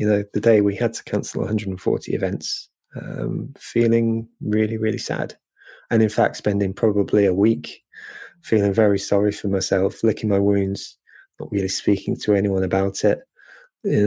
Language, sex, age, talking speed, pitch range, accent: English, male, 20-39, 160 wpm, 100-115 Hz, British